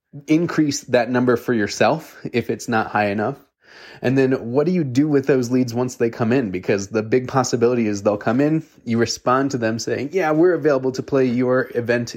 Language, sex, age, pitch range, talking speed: English, male, 20-39, 110-140 Hz, 210 wpm